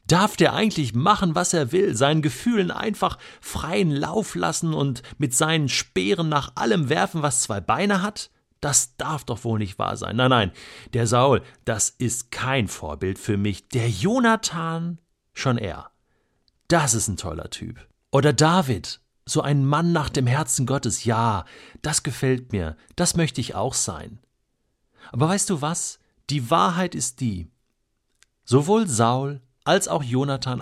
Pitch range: 115-155 Hz